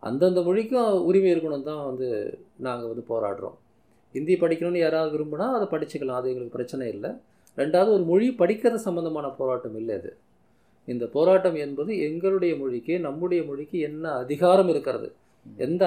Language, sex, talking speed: Tamil, male, 145 wpm